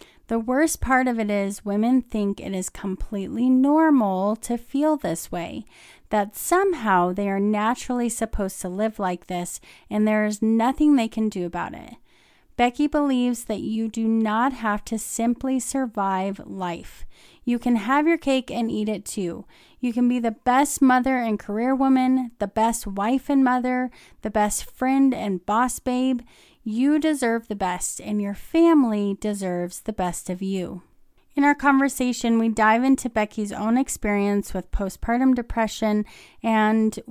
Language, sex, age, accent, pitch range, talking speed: English, female, 30-49, American, 200-255 Hz, 160 wpm